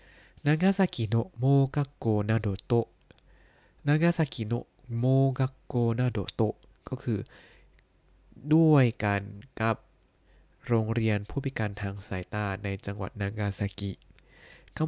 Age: 20-39